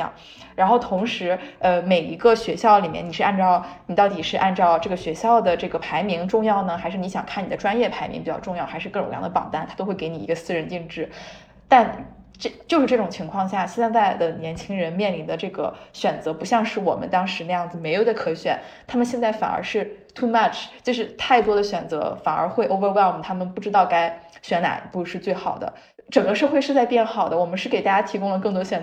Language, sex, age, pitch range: Chinese, female, 20-39, 175-225 Hz